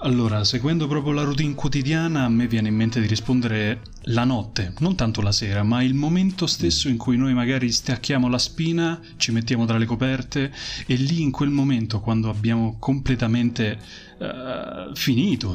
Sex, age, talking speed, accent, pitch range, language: male, 20-39, 170 wpm, native, 105-130 Hz, Italian